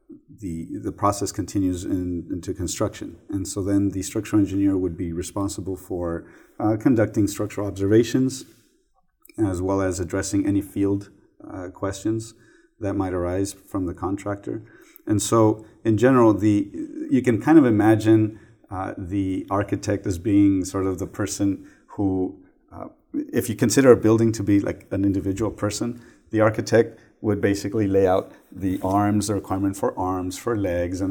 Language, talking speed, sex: English, 160 wpm, male